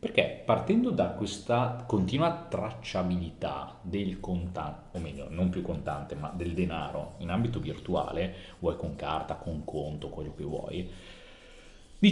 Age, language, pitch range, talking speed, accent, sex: 30-49, Italian, 85-120 Hz, 140 wpm, native, male